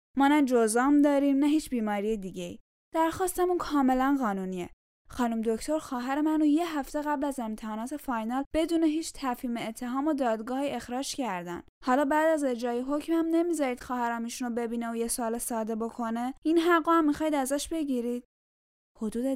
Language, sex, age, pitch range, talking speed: Persian, female, 10-29, 215-280 Hz, 150 wpm